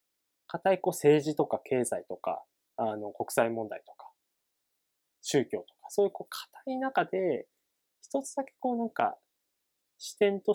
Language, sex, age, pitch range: Japanese, male, 20-39, 120-200 Hz